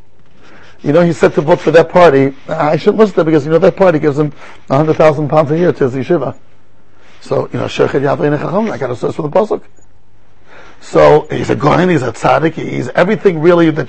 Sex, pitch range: male, 150-195 Hz